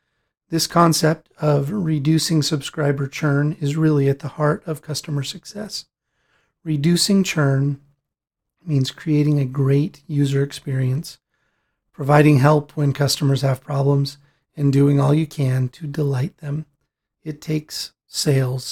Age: 30-49